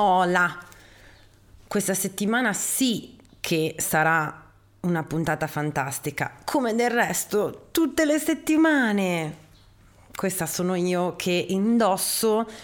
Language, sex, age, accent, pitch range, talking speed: Italian, female, 30-49, native, 165-205 Hz, 90 wpm